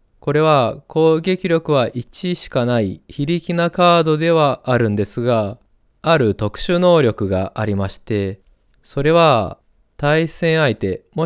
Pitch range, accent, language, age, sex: 115-155 Hz, native, Japanese, 20-39, male